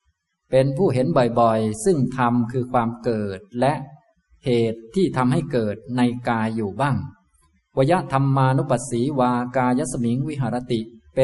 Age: 20-39